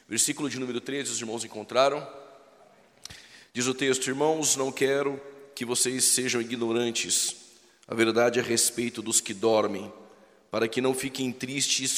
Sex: male